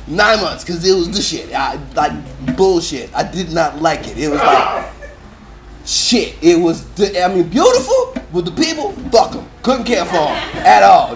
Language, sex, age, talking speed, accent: English, male, 30-49, 185 wpm, American